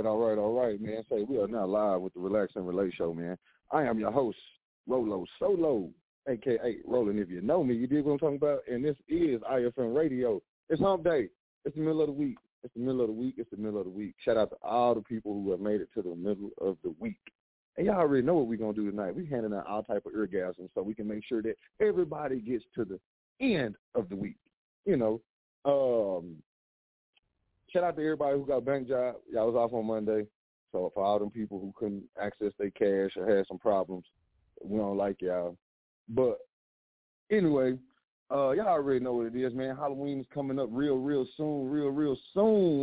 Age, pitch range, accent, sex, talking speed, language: 30-49, 105-140 Hz, American, male, 225 wpm, English